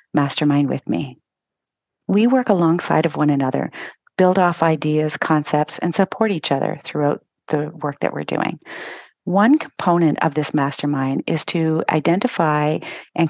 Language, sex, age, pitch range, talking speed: English, female, 40-59, 155-190 Hz, 145 wpm